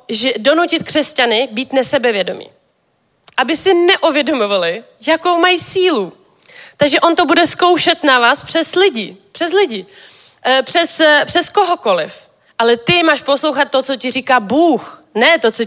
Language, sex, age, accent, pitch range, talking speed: Czech, female, 20-39, native, 215-275 Hz, 140 wpm